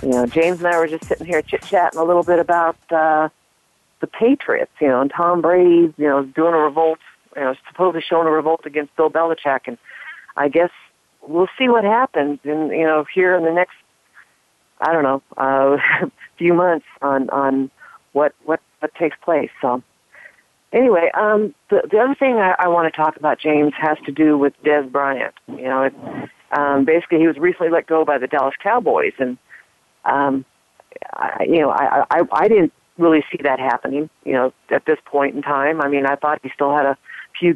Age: 50-69